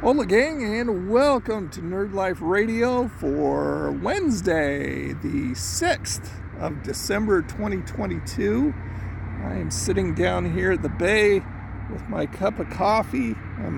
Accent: American